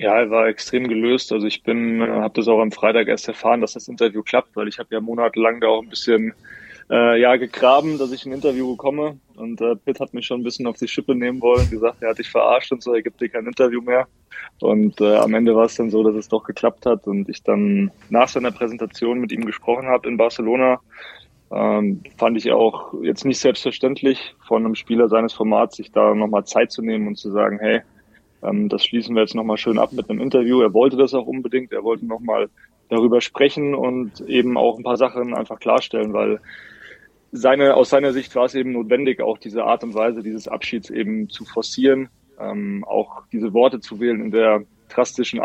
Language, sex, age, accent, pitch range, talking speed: German, male, 20-39, German, 110-125 Hz, 220 wpm